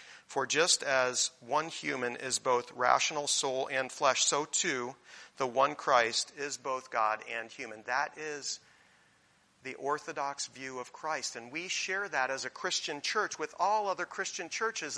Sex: male